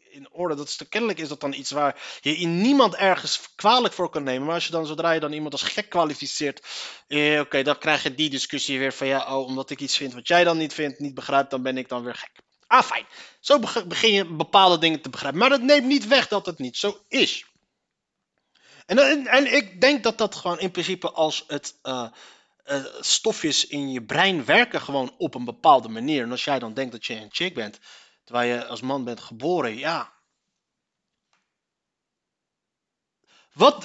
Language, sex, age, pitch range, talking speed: Dutch, male, 30-49, 130-180 Hz, 210 wpm